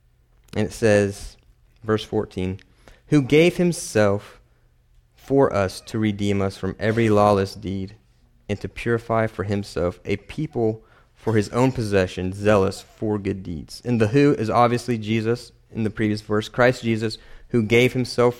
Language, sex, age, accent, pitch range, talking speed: English, male, 30-49, American, 105-125 Hz, 155 wpm